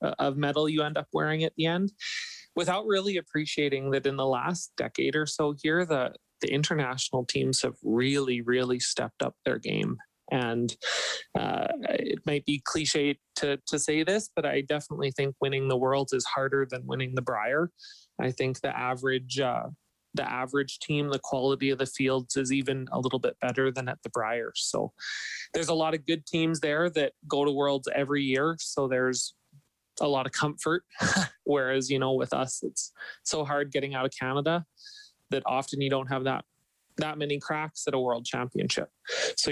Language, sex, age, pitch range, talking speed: English, male, 30-49, 130-155 Hz, 185 wpm